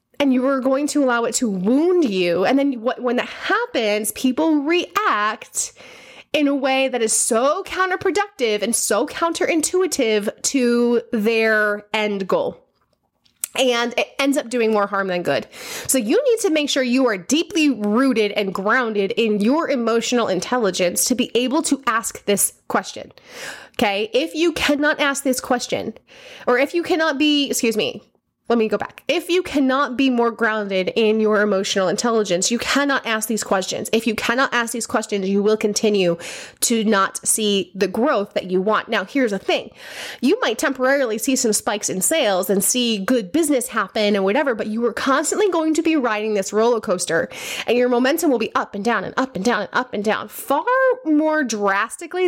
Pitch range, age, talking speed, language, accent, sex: 210-280 Hz, 20-39, 185 wpm, English, American, female